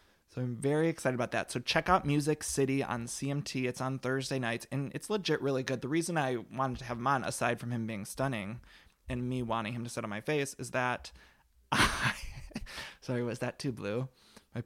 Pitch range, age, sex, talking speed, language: 120-150 Hz, 20-39, male, 215 wpm, English